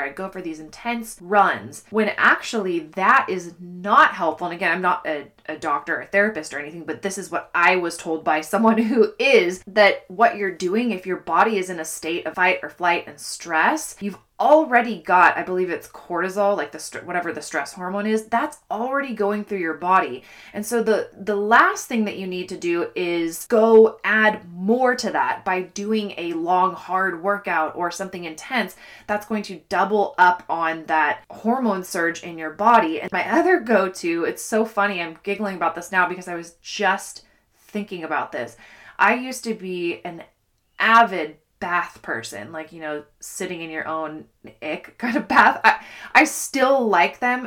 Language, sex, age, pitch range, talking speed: English, female, 20-39, 170-220 Hz, 195 wpm